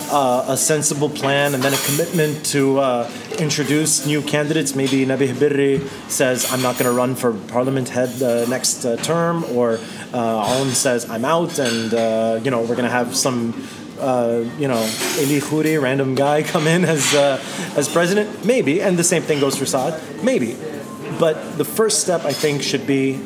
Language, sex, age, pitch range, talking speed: English, male, 30-49, 130-165 Hz, 195 wpm